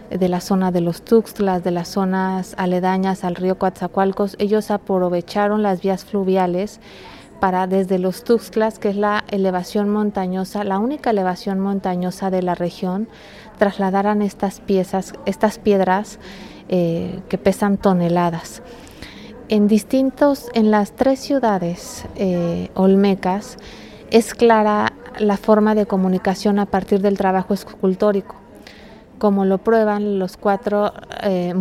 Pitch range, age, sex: 190-215 Hz, 30-49, female